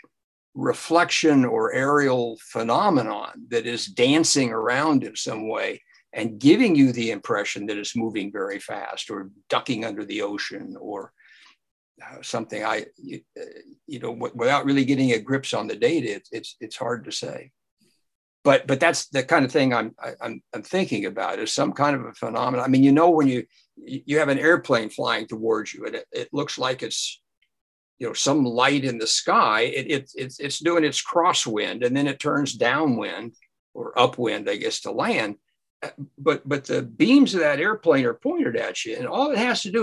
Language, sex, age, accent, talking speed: English, male, 60-79, American, 195 wpm